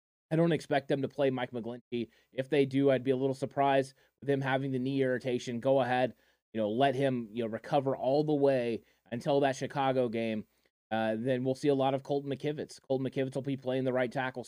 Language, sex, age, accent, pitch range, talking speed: English, male, 20-39, American, 125-140 Hz, 230 wpm